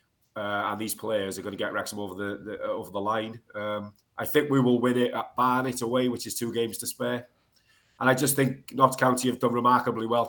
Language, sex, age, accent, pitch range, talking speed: English, male, 30-49, British, 110-125 Hz, 240 wpm